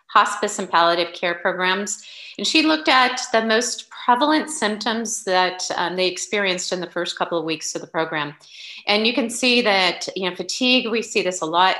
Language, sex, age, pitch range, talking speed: English, female, 40-59, 160-205 Hz, 200 wpm